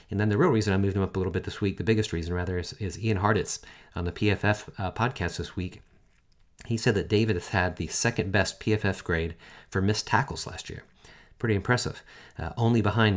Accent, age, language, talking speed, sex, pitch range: American, 40-59, English, 230 wpm, male, 90-110 Hz